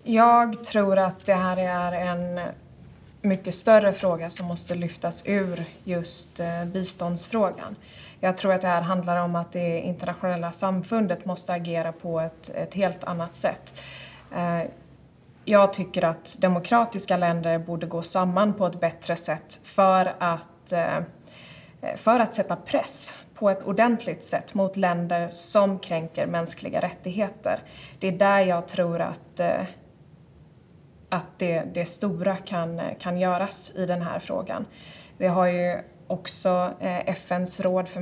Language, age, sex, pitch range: Swedish, 20-39, female, 170-190 Hz